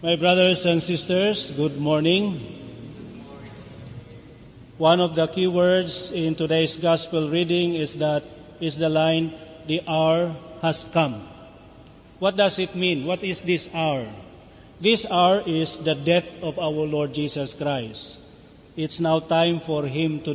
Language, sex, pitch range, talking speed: Indonesian, male, 150-180 Hz, 140 wpm